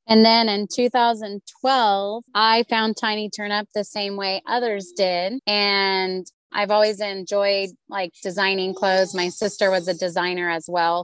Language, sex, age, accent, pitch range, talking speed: English, female, 20-39, American, 170-200 Hz, 145 wpm